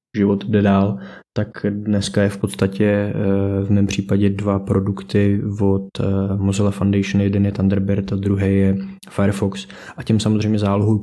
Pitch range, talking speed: 100-115 Hz, 145 wpm